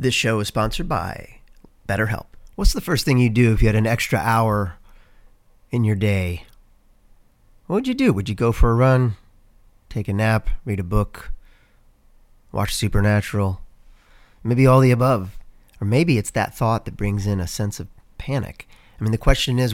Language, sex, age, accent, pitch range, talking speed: English, male, 40-59, American, 100-120 Hz, 180 wpm